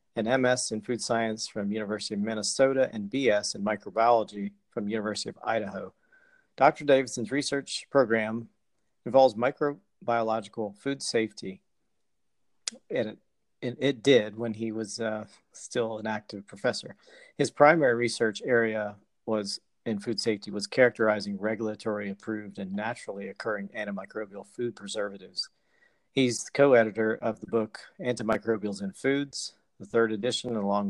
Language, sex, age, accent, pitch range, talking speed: English, male, 40-59, American, 105-125 Hz, 130 wpm